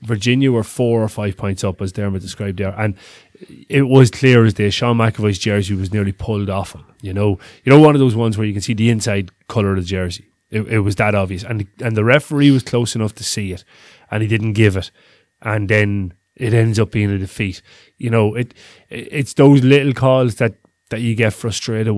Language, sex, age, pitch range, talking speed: English, male, 20-39, 100-120 Hz, 230 wpm